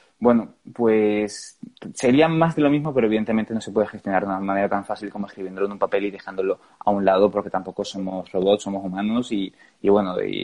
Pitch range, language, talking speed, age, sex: 100-120 Hz, Spanish, 220 wpm, 20-39, male